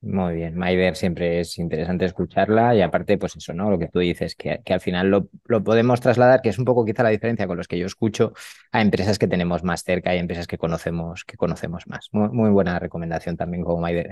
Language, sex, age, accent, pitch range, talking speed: Spanish, male, 30-49, Spanish, 90-125 Hz, 235 wpm